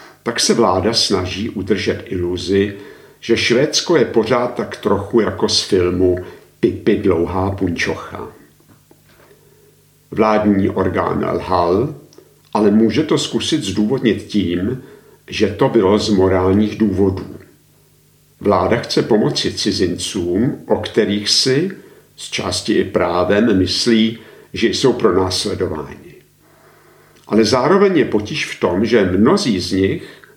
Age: 50-69